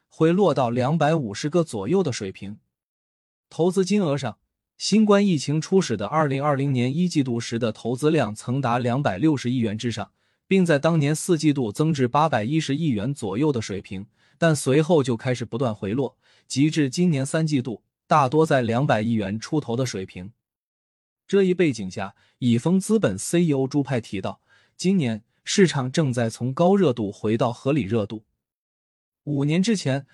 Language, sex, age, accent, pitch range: Chinese, male, 20-39, native, 115-160 Hz